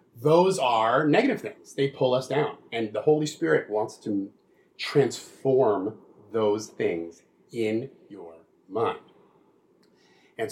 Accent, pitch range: American, 110-150 Hz